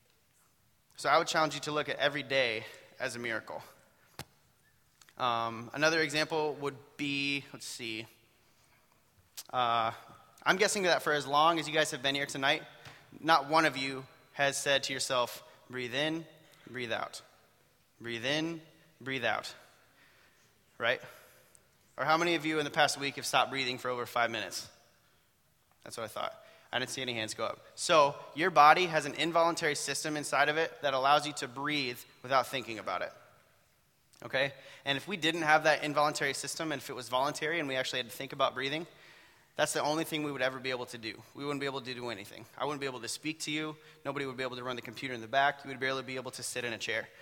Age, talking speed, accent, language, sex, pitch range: 20-39, 210 wpm, American, English, male, 125-150 Hz